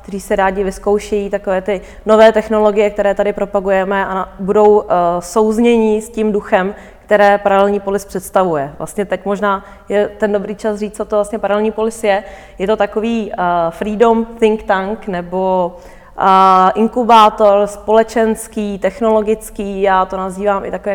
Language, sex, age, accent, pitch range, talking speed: Czech, female, 20-39, native, 190-215 Hz, 145 wpm